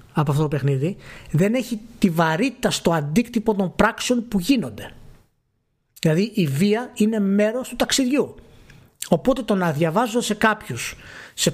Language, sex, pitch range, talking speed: Greek, male, 140-215 Hz, 145 wpm